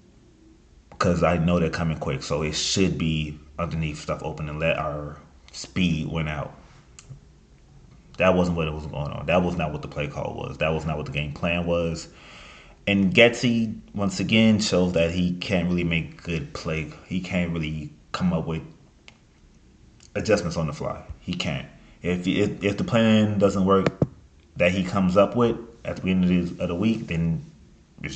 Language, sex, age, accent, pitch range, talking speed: English, male, 30-49, American, 80-95 Hz, 190 wpm